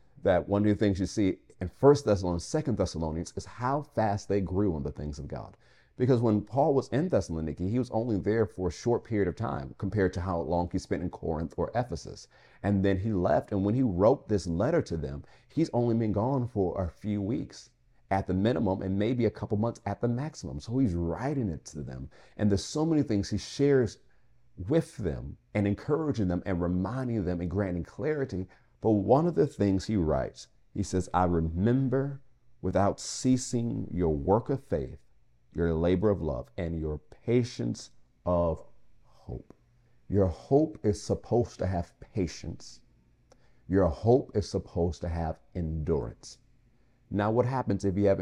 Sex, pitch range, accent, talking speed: male, 90-120 Hz, American, 185 wpm